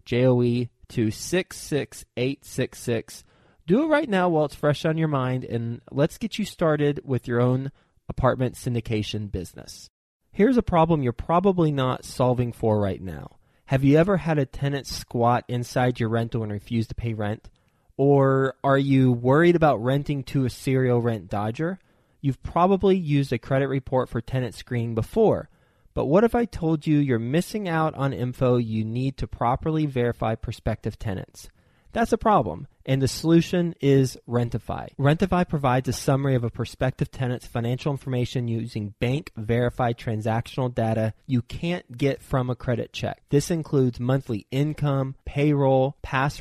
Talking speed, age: 160 wpm, 20-39